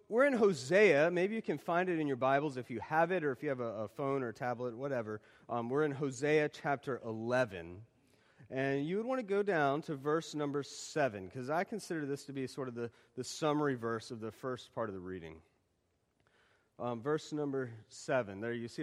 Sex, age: male, 30-49